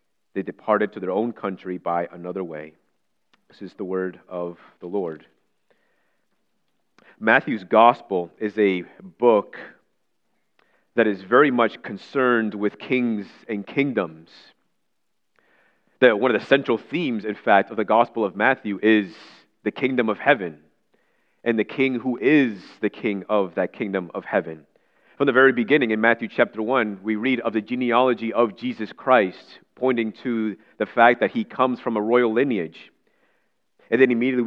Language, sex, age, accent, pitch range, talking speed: English, male, 30-49, American, 105-130 Hz, 155 wpm